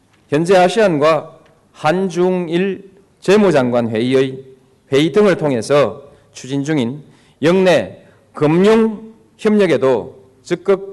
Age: 40-59